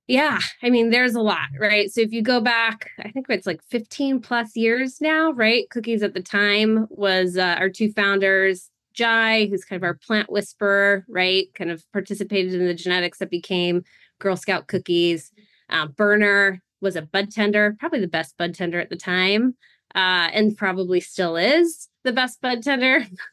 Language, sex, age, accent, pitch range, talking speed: English, female, 20-39, American, 185-220 Hz, 185 wpm